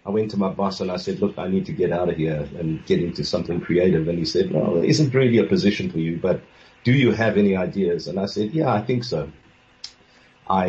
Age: 50-69